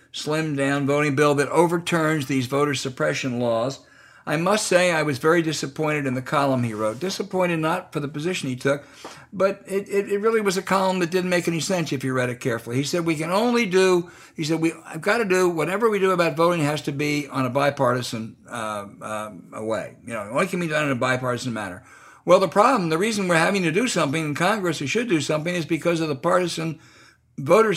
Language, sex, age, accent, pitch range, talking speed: English, male, 60-79, American, 135-180 Hz, 225 wpm